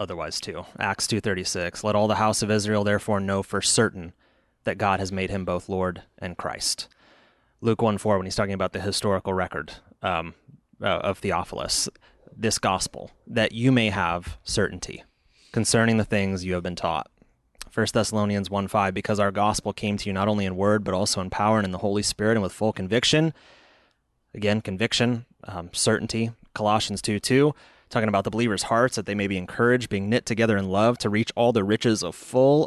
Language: English